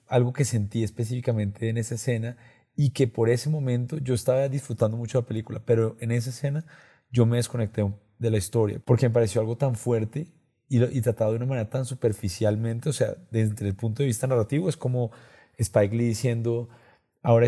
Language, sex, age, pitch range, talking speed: Spanish, male, 30-49, 110-125 Hz, 200 wpm